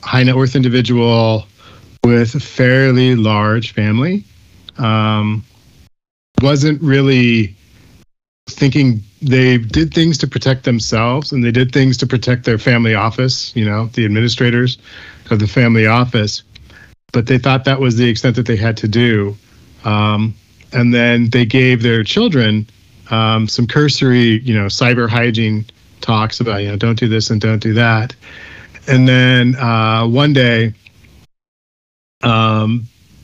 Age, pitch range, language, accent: 40-59, 110-125 Hz, English, American